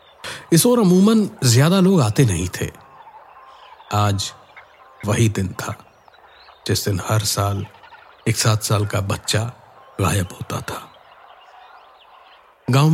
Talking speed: 115 wpm